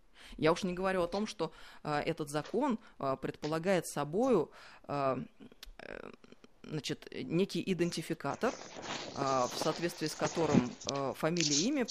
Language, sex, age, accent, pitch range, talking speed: Russian, female, 30-49, native, 155-205 Hz, 95 wpm